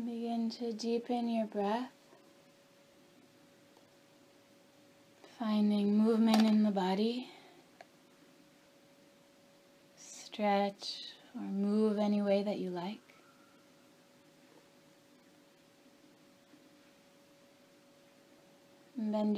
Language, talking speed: English, 60 wpm